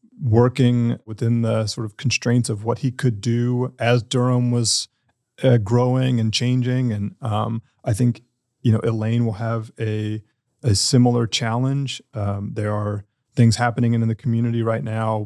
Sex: male